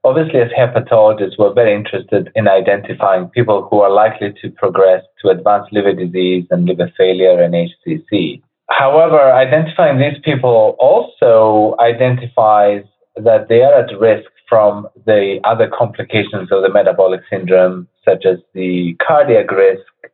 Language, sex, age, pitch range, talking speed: English, male, 30-49, 95-120 Hz, 140 wpm